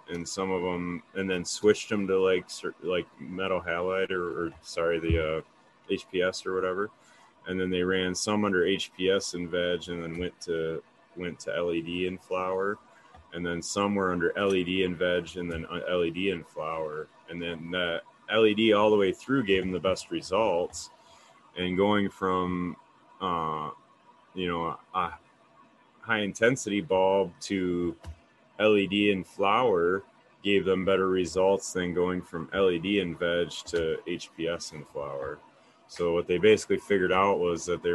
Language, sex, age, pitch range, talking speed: English, male, 30-49, 85-95 Hz, 160 wpm